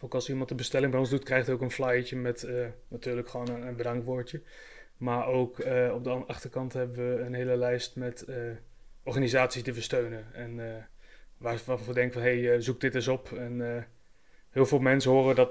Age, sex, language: 20-39, male, Dutch